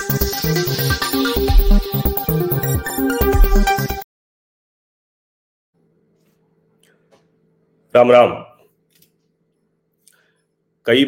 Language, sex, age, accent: Hindi, male, 50-69, native